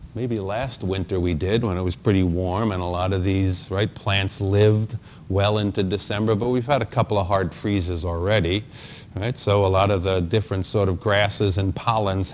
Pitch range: 105-130 Hz